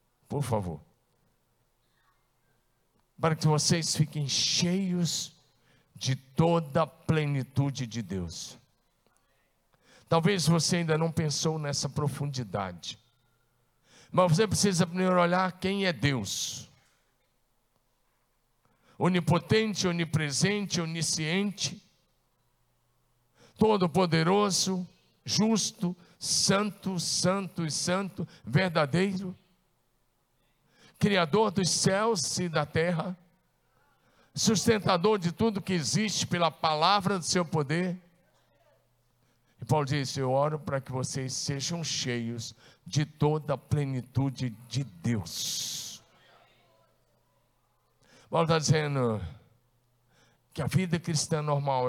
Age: 50-69